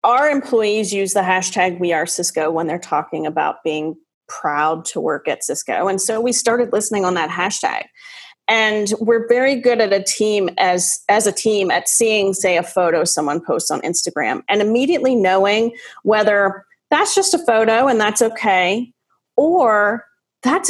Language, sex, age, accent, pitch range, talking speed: English, female, 30-49, American, 180-235 Hz, 170 wpm